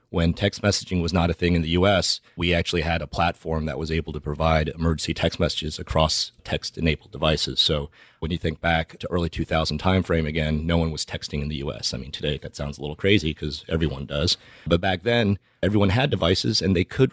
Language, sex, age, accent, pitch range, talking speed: English, male, 30-49, American, 80-95 Hz, 220 wpm